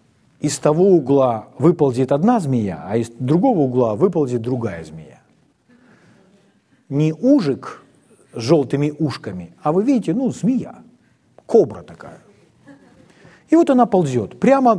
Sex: male